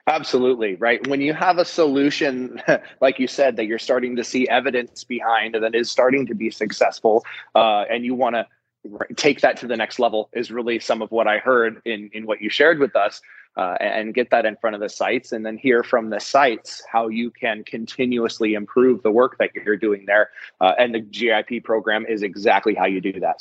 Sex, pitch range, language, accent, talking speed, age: male, 110-130 Hz, English, American, 220 wpm, 20-39